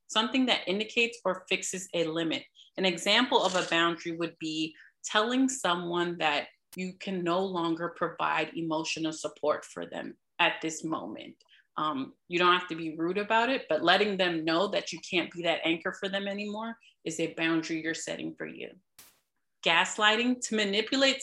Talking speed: 170 wpm